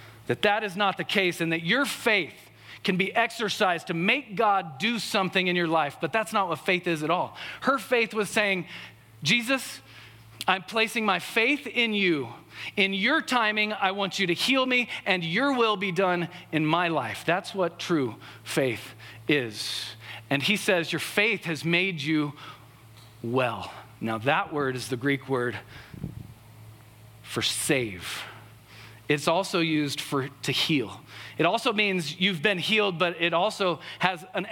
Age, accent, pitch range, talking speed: 40-59, American, 120-190 Hz, 170 wpm